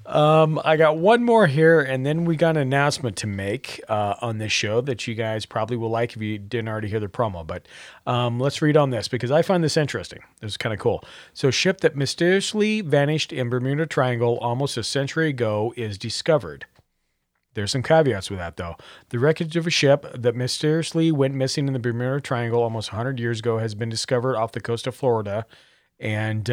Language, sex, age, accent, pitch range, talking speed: English, male, 40-59, American, 110-145 Hz, 215 wpm